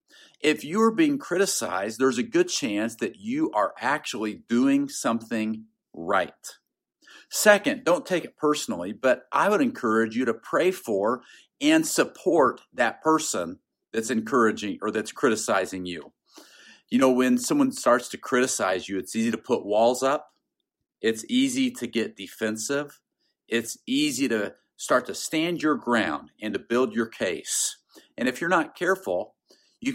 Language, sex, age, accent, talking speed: English, male, 50-69, American, 150 wpm